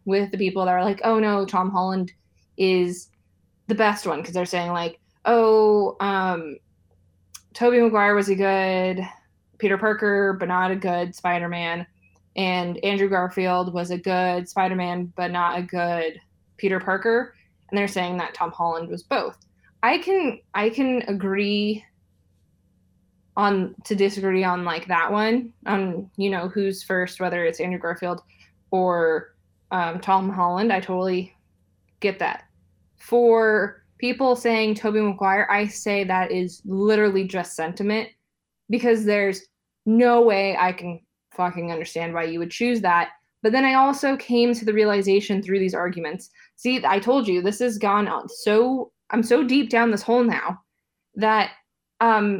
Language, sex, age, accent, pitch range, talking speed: English, female, 20-39, American, 175-220 Hz, 160 wpm